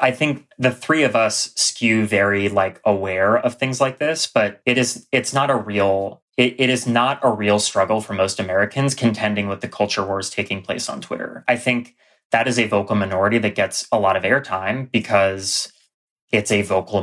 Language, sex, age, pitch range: English, male, 30-49, 100-125 Hz